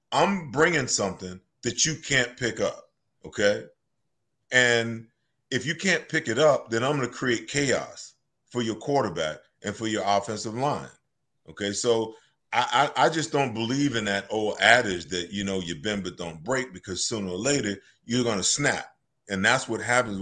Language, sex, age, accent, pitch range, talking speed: English, male, 30-49, American, 105-130 Hz, 185 wpm